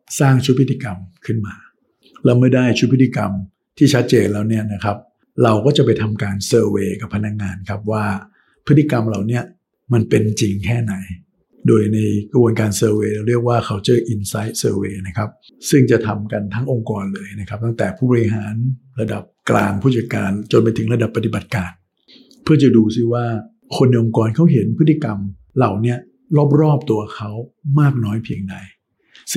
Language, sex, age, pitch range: Thai, male, 60-79, 105-125 Hz